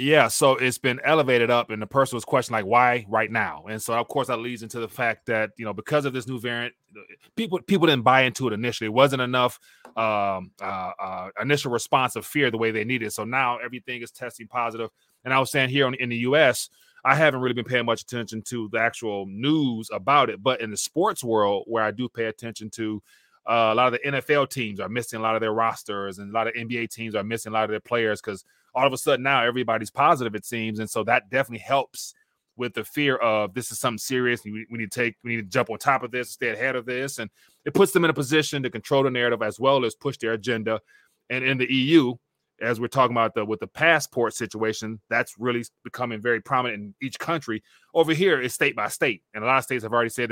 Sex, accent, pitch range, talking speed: male, American, 110-130 Hz, 255 wpm